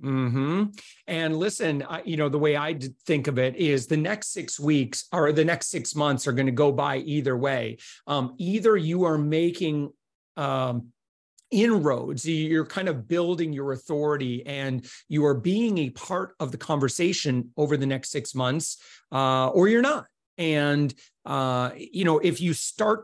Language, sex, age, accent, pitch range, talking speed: English, male, 40-59, American, 135-170 Hz, 175 wpm